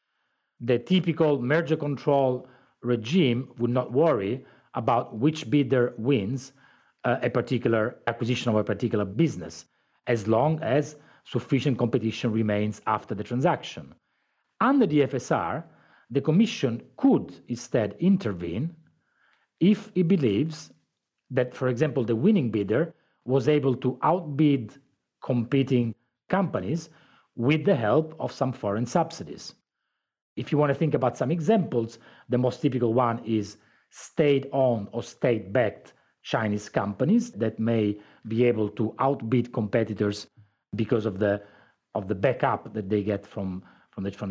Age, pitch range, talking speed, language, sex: 40-59, 115-150 Hz, 130 wpm, English, male